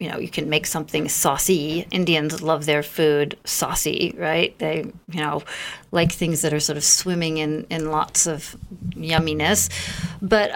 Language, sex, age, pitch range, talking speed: English, female, 50-69, 160-200 Hz, 165 wpm